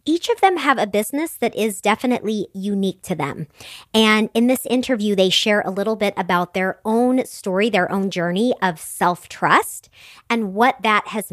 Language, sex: English, male